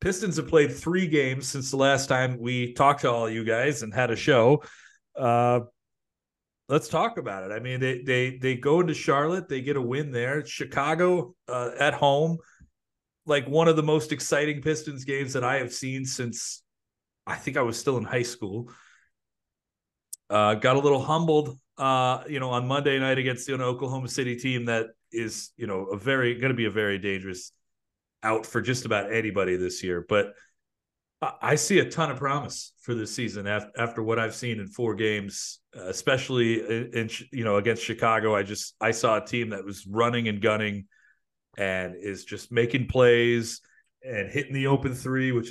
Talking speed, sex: 185 wpm, male